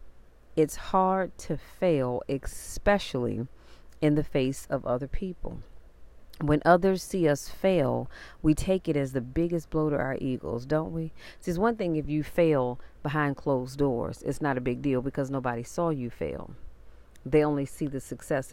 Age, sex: 40-59, female